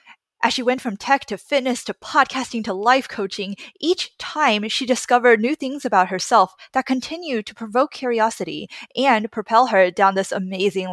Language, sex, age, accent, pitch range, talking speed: English, female, 20-39, American, 200-255 Hz, 170 wpm